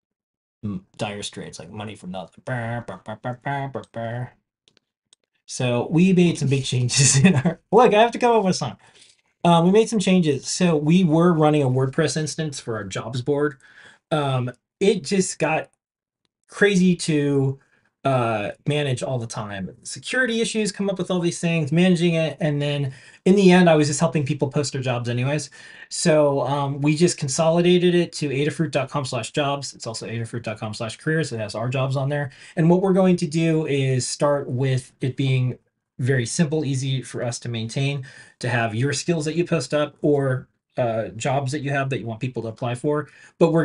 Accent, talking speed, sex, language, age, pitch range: American, 185 wpm, male, English, 20-39, 120-155 Hz